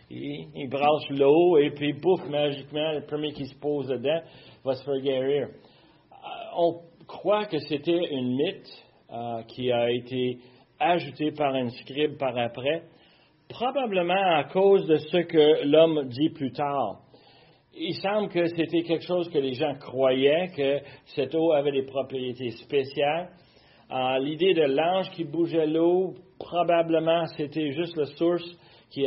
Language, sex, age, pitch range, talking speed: French, male, 40-59, 130-160 Hz, 155 wpm